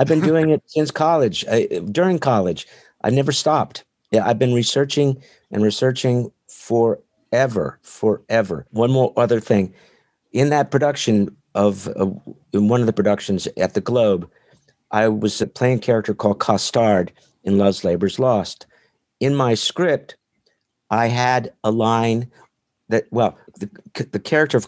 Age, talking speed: 50-69, 150 wpm